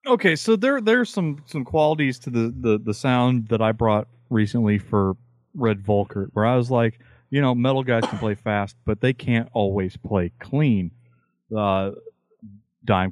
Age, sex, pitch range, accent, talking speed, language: 30-49, male, 110-135 Hz, American, 175 wpm, English